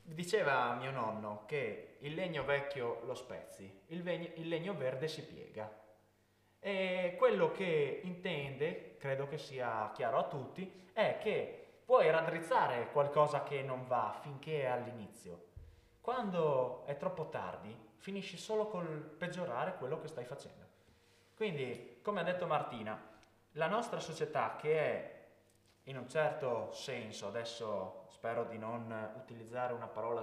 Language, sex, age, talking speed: Italian, male, 20-39, 135 wpm